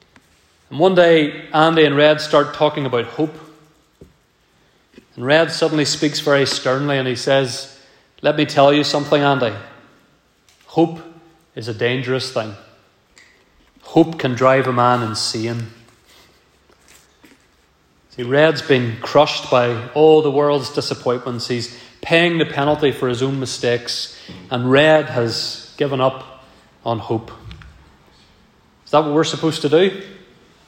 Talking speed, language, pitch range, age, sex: 130 wpm, English, 125-160 Hz, 30-49, male